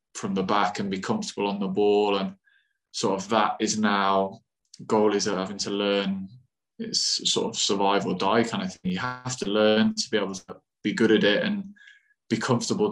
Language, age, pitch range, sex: English, 20-39, 100-125 Hz, male